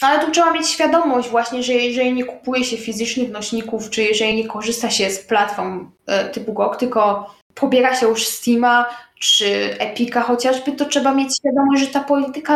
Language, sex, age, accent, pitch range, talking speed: Polish, female, 10-29, native, 225-275 Hz, 175 wpm